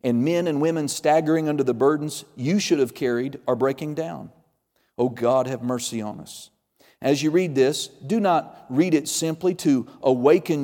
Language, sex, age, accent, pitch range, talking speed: English, male, 40-59, American, 135-165 Hz, 180 wpm